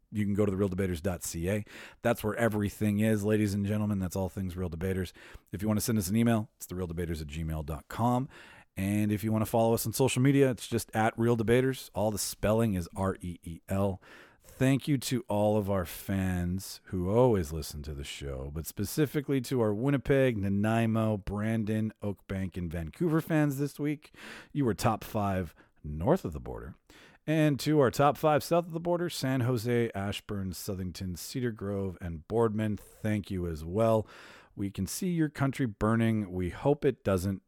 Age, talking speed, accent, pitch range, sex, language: 40-59, 185 wpm, American, 90-115 Hz, male, English